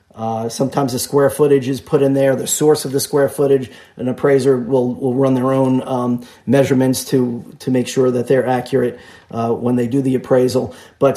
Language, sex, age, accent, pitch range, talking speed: English, male, 30-49, American, 130-150 Hz, 205 wpm